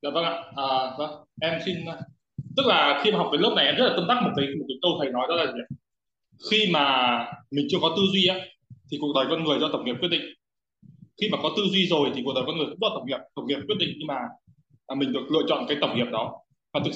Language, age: Vietnamese, 20-39